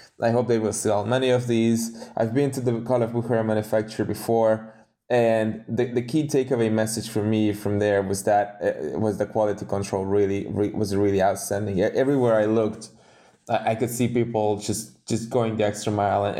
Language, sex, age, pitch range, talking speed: English, male, 20-39, 100-120 Hz, 195 wpm